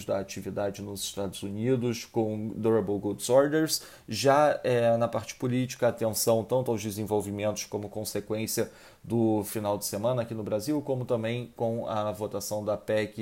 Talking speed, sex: 150 wpm, male